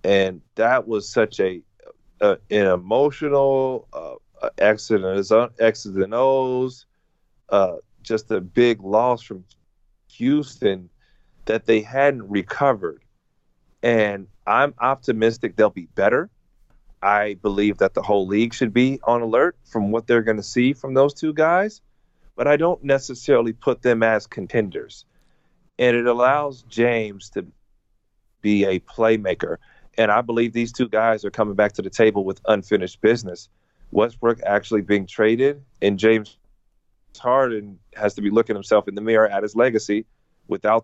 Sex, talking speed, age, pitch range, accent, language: male, 145 wpm, 40-59, 100-125 Hz, American, English